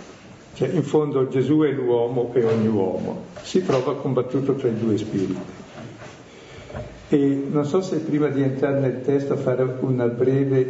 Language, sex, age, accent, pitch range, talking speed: Italian, male, 50-69, native, 120-145 Hz, 155 wpm